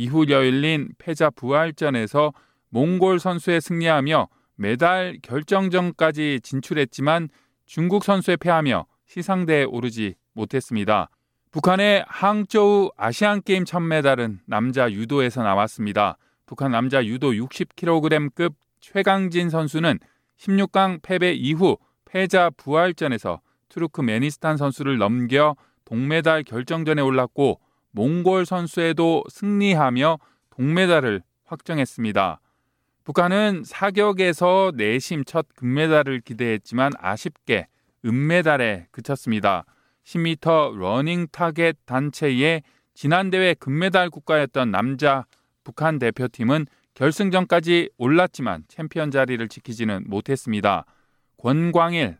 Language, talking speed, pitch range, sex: English, 85 wpm, 130-175 Hz, male